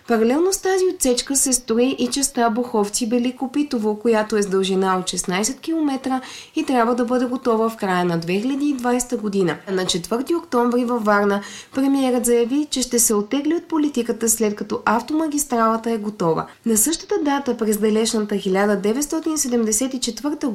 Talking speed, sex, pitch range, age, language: 150 wpm, female, 210-270 Hz, 20-39, Bulgarian